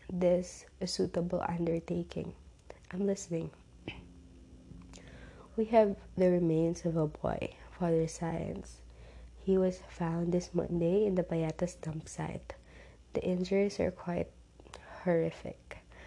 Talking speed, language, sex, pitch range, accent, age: 115 wpm, English, female, 160-180 Hz, Filipino, 20-39